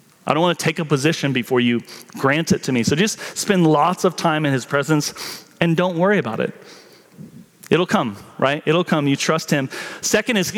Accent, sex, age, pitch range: American, male, 30-49, 145-190 Hz